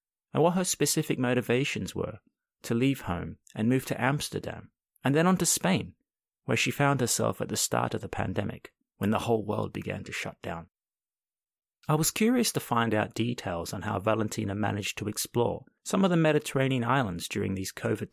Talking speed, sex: 190 wpm, male